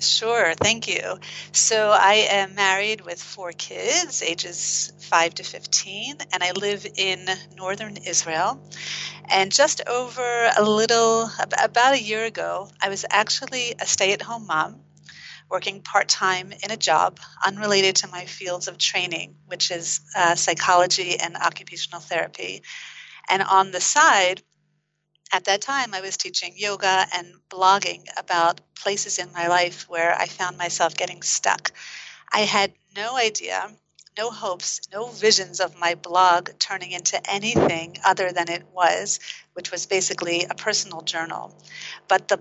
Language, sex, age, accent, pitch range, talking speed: English, female, 40-59, American, 175-205 Hz, 145 wpm